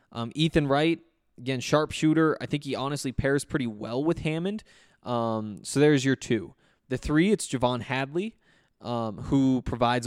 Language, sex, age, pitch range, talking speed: English, male, 20-39, 125-150 Hz, 160 wpm